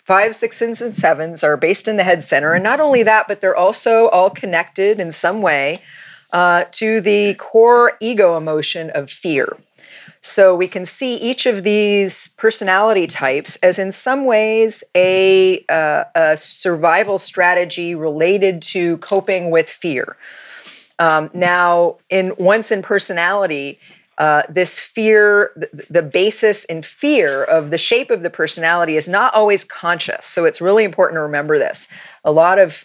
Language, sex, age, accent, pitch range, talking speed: English, female, 40-59, American, 160-215 Hz, 155 wpm